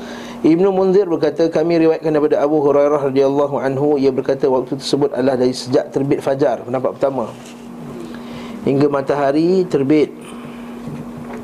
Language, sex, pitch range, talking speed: Malay, male, 140-175 Hz, 130 wpm